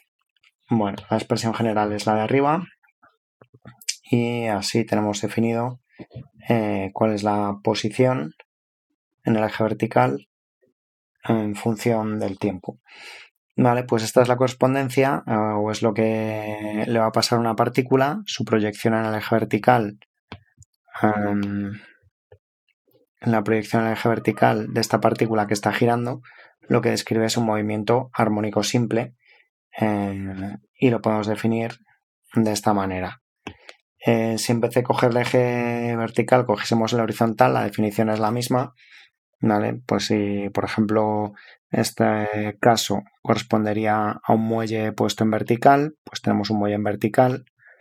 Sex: male